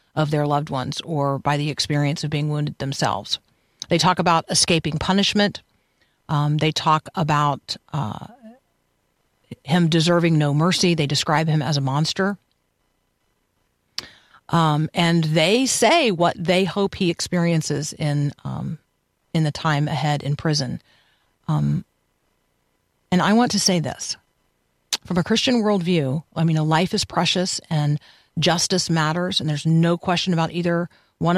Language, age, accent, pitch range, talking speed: English, 40-59, American, 150-185 Hz, 145 wpm